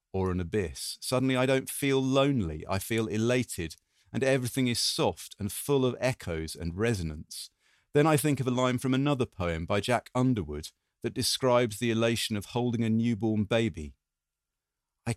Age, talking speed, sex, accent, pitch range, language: 40-59, 170 wpm, male, British, 85-130 Hz, English